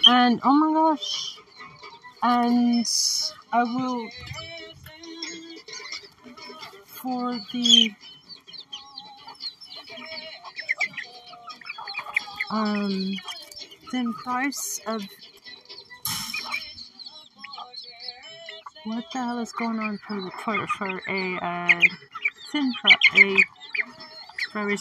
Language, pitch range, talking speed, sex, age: English, 215-335 Hz, 70 wpm, female, 40-59